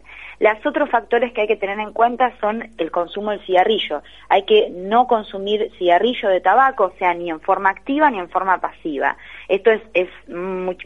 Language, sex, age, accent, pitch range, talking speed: Spanish, female, 20-39, Argentinian, 175-215 Hz, 190 wpm